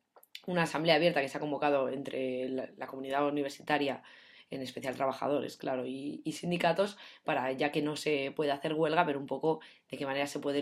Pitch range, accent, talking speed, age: 135-160 Hz, Spanish, 190 wpm, 20-39